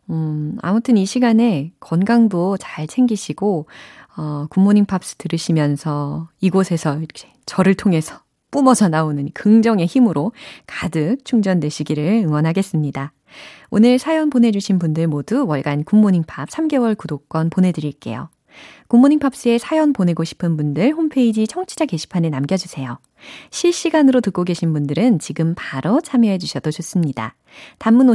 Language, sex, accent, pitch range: Korean, female, native, 160-240 Hz